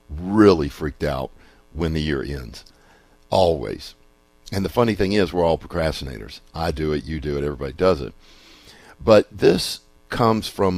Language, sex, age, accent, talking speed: English, male, 60-79, American, 160 wpm